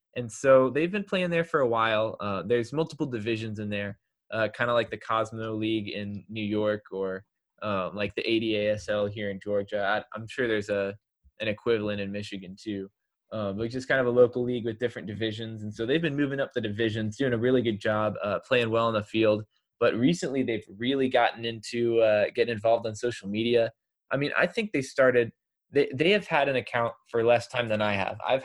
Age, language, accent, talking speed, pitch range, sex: 20-39, English, American, 220 wpm, 105-130 Hz, male